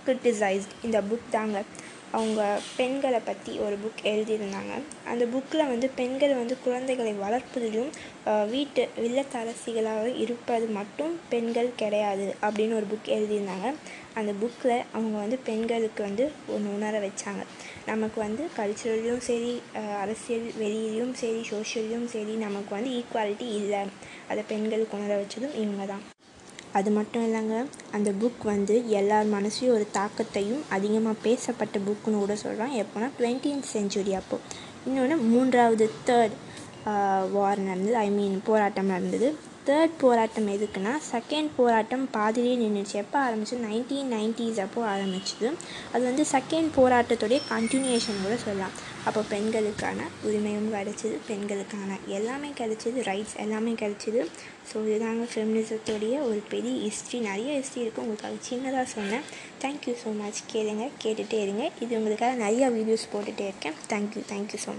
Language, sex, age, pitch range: Tamil, female, 20-39, 210-240 Hz